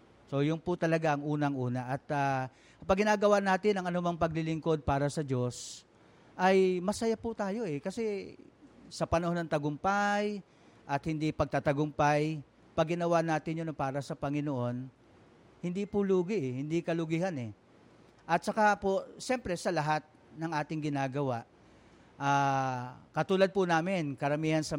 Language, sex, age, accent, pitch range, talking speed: Filipino, male, 50-69, native, 140-180 Hz, 140 wpm